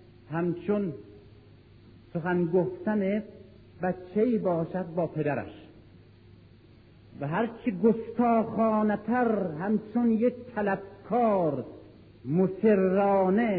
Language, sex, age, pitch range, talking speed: Persian, male, 50-69, 110-175 Hz, 60 wpm